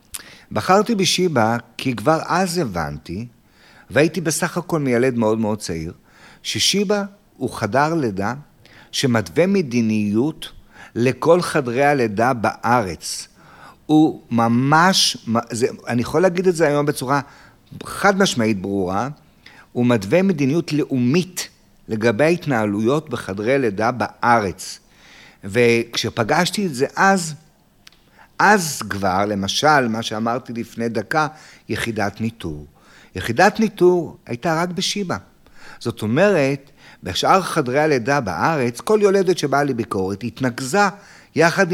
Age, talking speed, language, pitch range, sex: 50-69, 110 wpm, Hebrew, 115-175 Hz, male